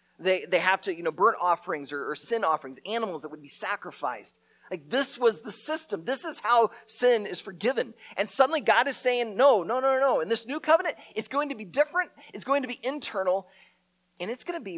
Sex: male